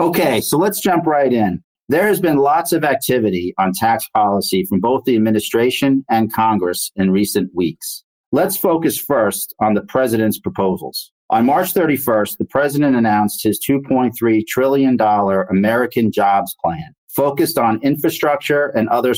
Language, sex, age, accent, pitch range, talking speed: English, male, 50-69, American, 105-135 Hz, 150 wpm